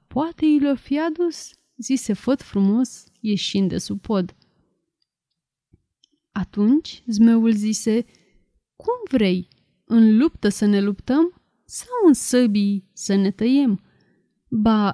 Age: 30-49